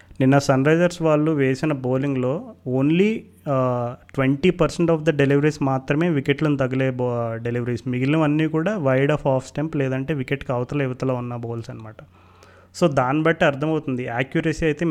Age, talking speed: 30-49, 145 wpm